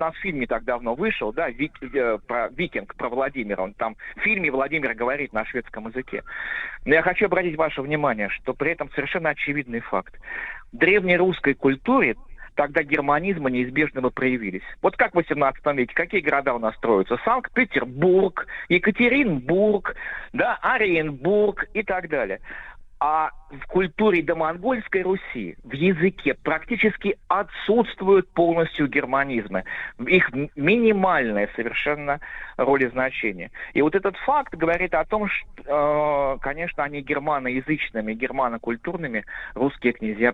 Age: 50-69